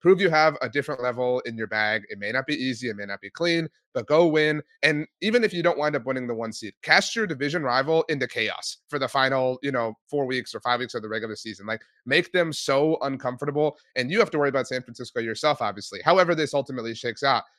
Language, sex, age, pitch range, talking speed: English, male, 30-49, 120-160 Hz, 250 wpm